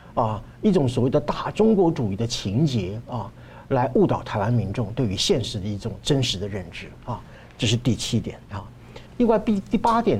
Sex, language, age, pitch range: male, Chinese, 50-69, 115-185 Hz